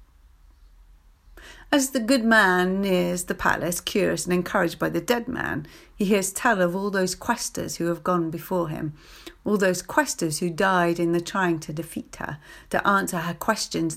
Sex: female